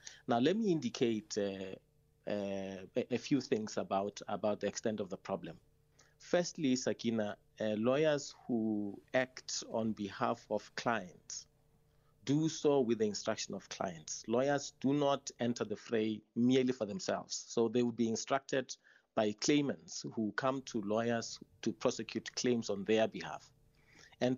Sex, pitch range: male, 110-140 Hz